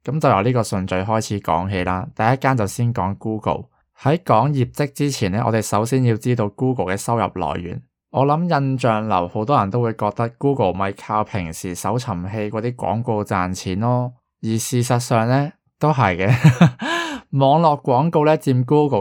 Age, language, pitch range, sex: 20-39, Chinese, 100-130 Hz, male